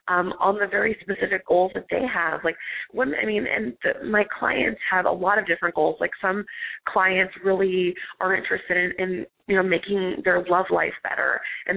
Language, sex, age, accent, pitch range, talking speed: English, female, 20-39, American, 165-195 Hz, 190 wpm